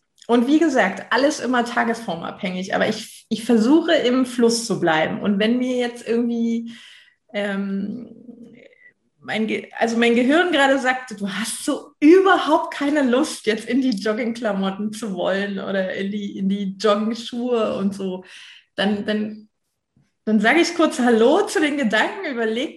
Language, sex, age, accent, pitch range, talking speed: German, female, 20-39, German, 215-285 Hz, 155 wpm